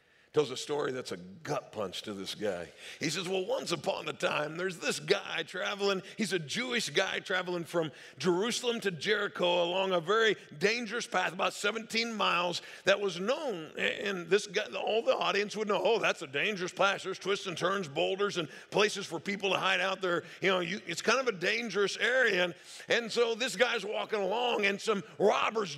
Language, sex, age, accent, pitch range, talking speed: English, male, 50-69, American, 185-235 Hz, 200 wpm